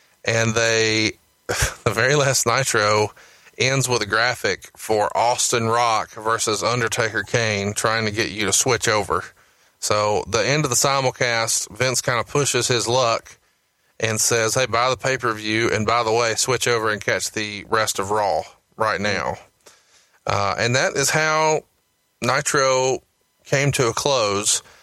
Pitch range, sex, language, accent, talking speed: 110-130 Hz, male, English, American, 155 wpm